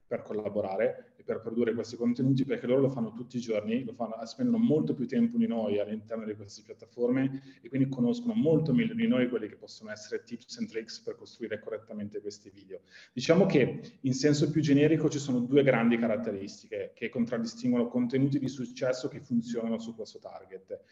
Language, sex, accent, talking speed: Italian, male, native, 190 wpm